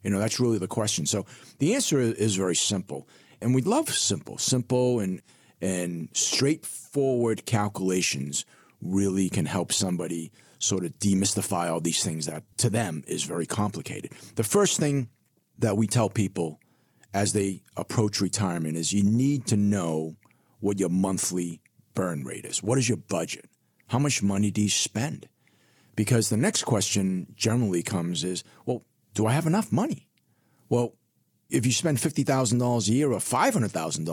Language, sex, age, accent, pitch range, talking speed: English, male, 40-59, American, 95-130 Hz, 160 wpm